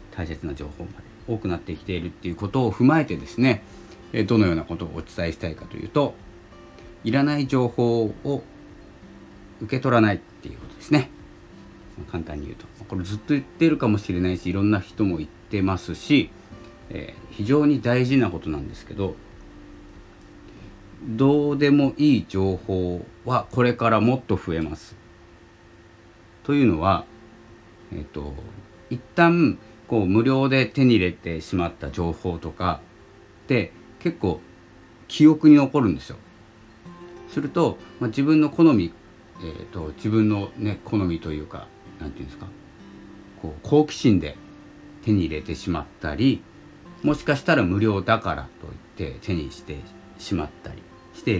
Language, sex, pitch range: Japanese, male, 85-120 Hz